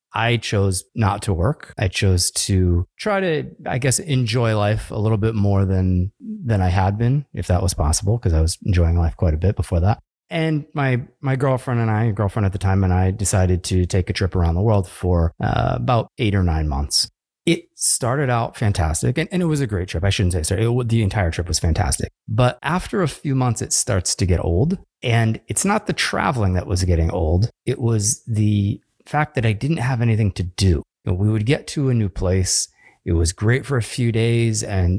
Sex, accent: male, American